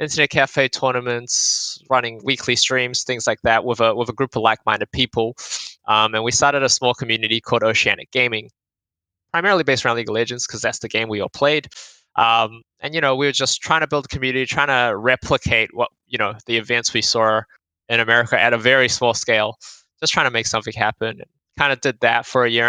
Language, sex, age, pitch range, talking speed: English, male, 20-39, 110-125 Hz, 215 wpm